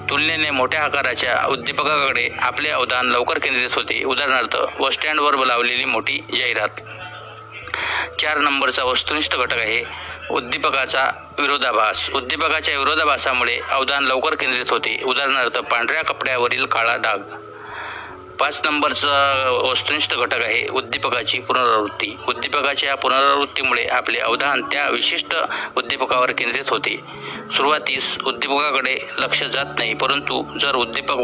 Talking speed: 105 wpm